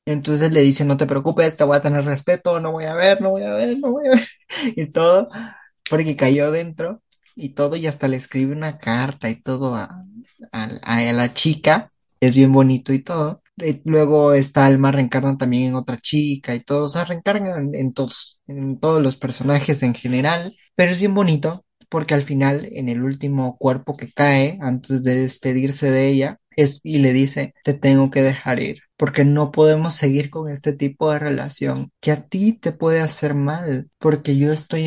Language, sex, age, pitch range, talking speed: Spanish, male, 20-39, 135-160 Hz, 200 wpm